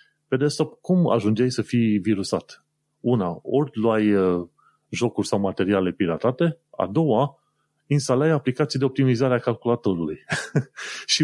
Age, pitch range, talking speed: 30-49, 105-145 Hz, 130 wpm